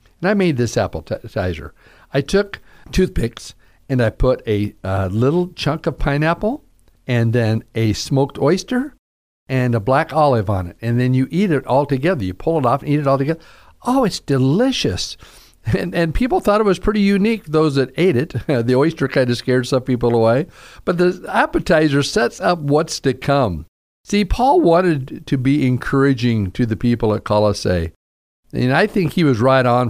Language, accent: English, American